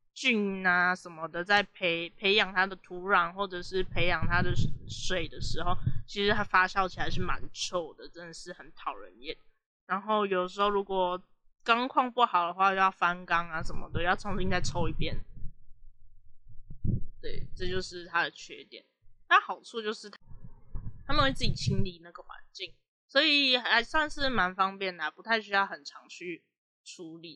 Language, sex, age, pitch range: Chinese, female, 20-39, 175-215 Hz